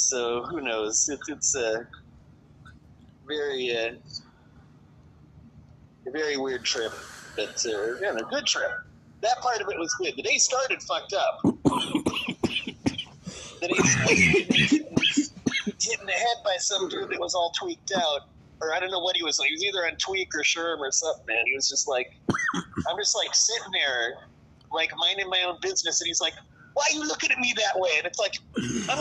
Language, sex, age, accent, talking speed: English, male, 30-49, American, 190 wpm